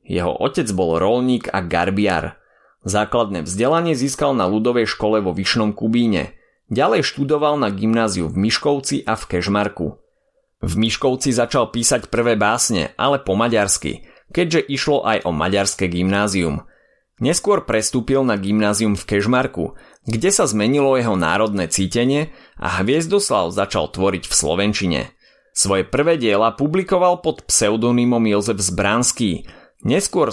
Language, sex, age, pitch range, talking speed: Slovak, male, 30-49, 95-130 Hz, 130 wpm